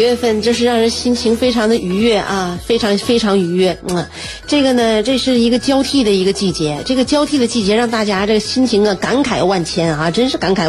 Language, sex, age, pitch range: Chinese, female, 30-49, 200-275 Hz